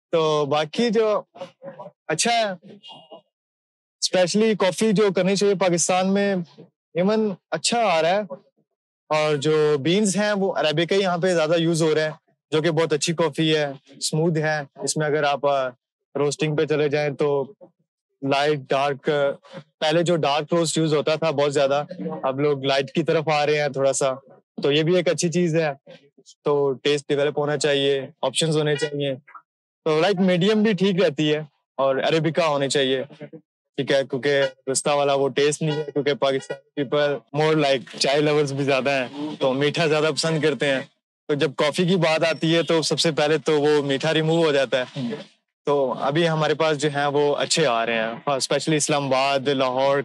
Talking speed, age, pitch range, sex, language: 175 wpm, 20-39, 140-165 Hz, male, Urdu